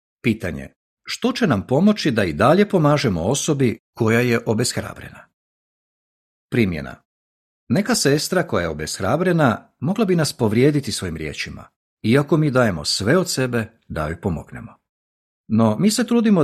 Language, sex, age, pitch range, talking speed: Croatian, male, 50-69, 100-155 Hz, 140 wpm